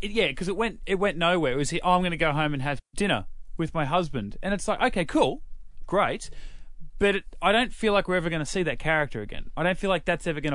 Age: 30-49